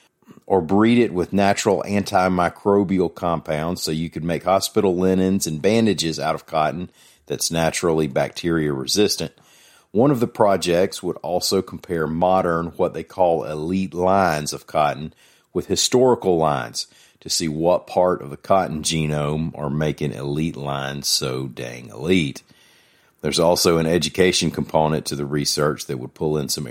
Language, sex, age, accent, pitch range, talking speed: English, male, 40-59, American, 75-95 Hz, 150 wpm